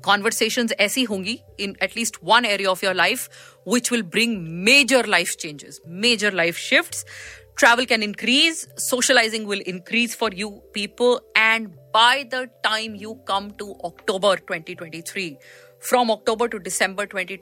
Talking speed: 145 wpm